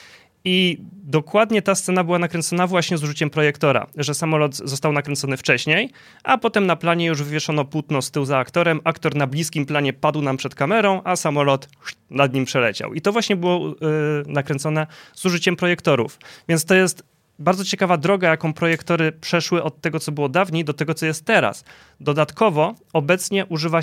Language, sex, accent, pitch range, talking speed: Polish, male, native, 150-175 Hz, 175 wpm